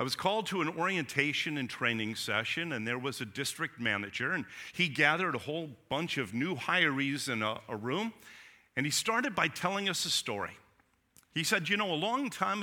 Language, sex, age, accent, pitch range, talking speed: English, male, 50-69, American, 125-185 Hz, 205 wpm